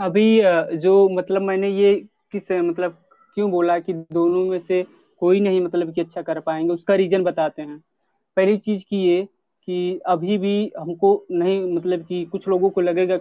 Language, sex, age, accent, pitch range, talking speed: Hindi, male, 30-49, native, 175-200 Hz, 180 wpm